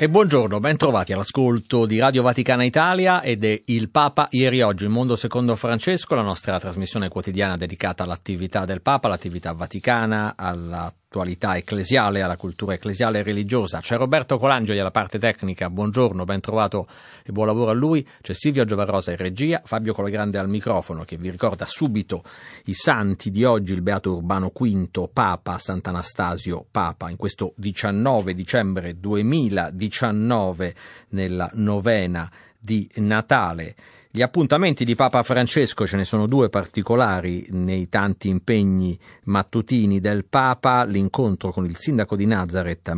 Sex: male